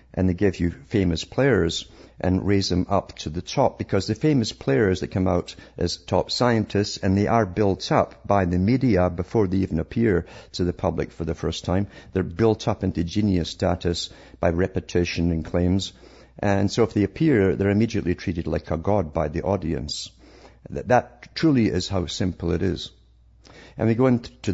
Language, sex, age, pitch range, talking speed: English, male, 50-69, 85-105 Hz, 190 wpm